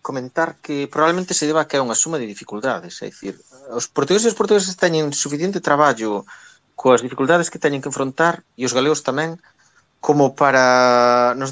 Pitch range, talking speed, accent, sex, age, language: 115-150 Hz, 180 wpm, Spanish, male, 30-49, Portuguese